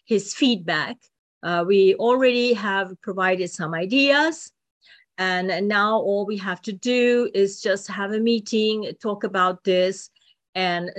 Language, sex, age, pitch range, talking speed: English, female, 40-59, 180-240 Hz, 135 wpm